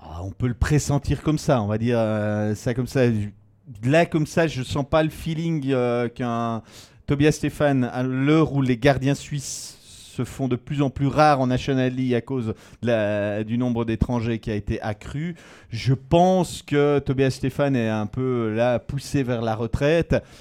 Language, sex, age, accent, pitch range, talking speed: French, male, 30-49, French, 115-145 Hz, 195 wpm